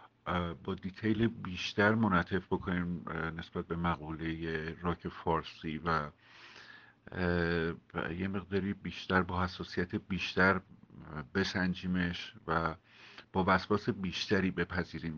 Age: 50-69